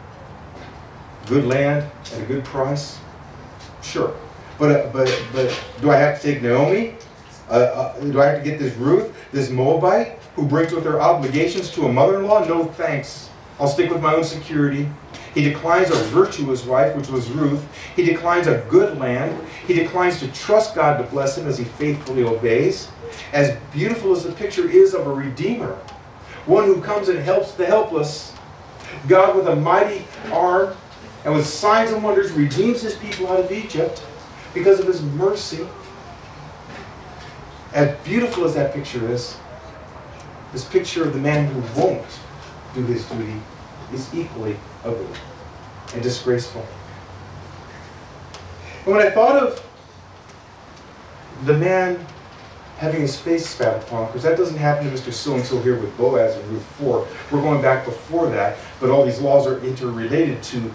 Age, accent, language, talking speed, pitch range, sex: 40-59, American, English, 160 wpm, 125-170 Hz, male